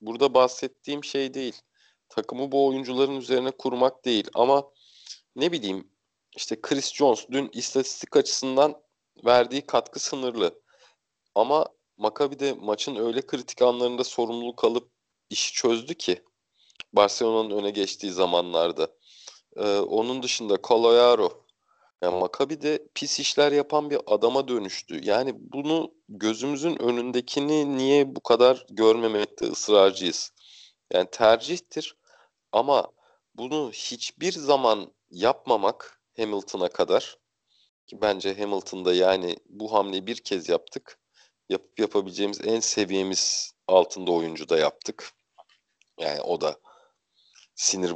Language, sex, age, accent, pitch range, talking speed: Turkish, male, 40-59, native, 100-140 Hz, 115 wpm